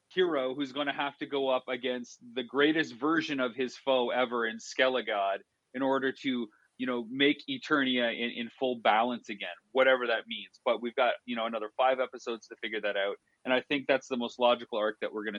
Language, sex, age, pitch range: English, male, 30-49, 125-160 Hz